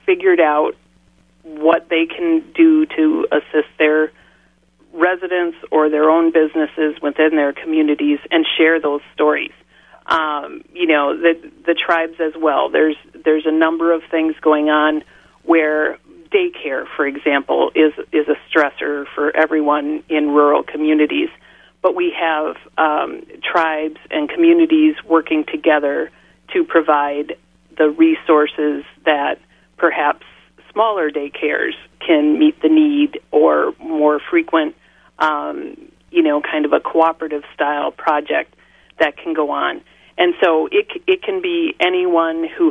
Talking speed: 135 wpm